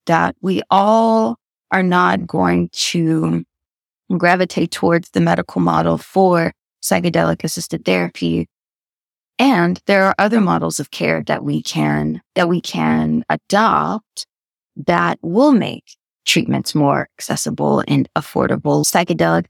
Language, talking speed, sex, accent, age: English, 120 wpm, female, American, 20-39